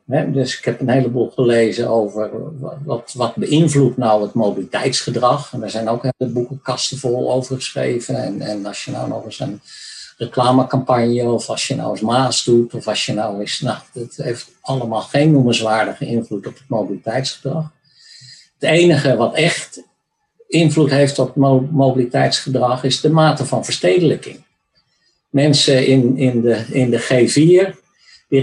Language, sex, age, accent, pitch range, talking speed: Dutch, male, 50-69, Dutch, 120-145 Hz, 160 wpm